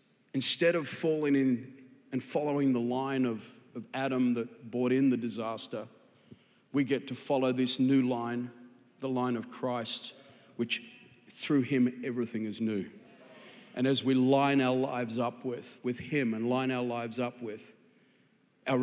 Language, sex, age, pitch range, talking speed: Swedish, male, 40-59, 125-145 Hz, 160 wpm